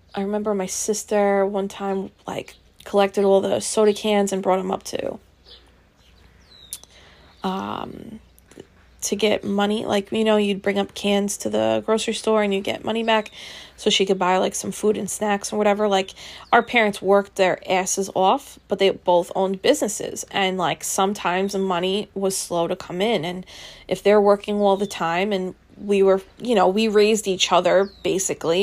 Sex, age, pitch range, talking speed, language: female, 20-39, 180-210 Hz, 180 wpm, English